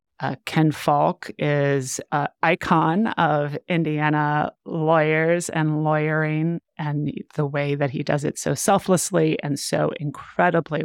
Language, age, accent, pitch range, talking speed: English, 30-49, American, 140-160 Hz, 125 wpm